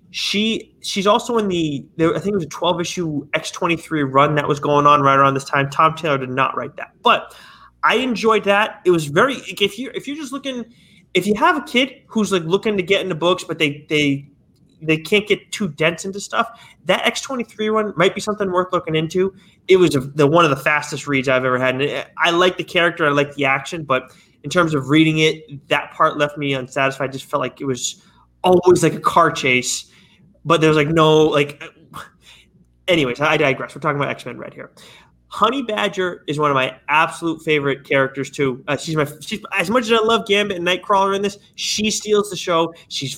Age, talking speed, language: 20-39, 225 wpm, English